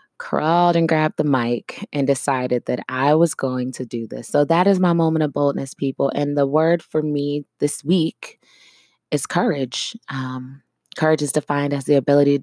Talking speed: 190 wpm